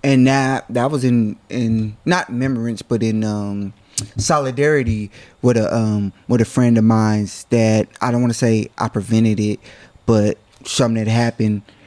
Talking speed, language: 165 wpm, English